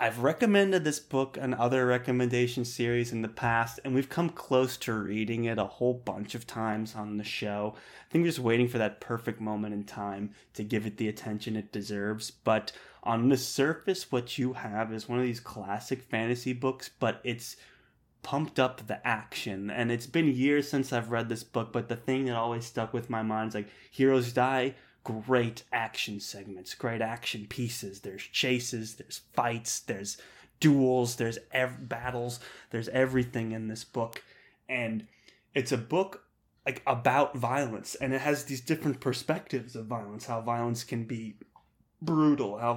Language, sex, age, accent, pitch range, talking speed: English, male, 20-39, American, 110-130 Hz, 180 wpm